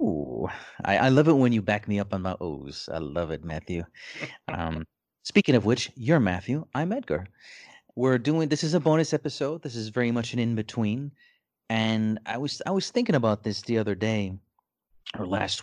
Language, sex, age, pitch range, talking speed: English, male, 30-49, 100-130 Hz, 195 wpm